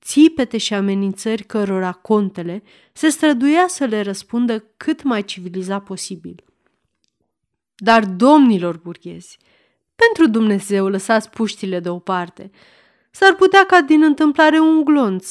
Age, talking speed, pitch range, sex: 30-49, 115 wpm, 195-300 Hz, female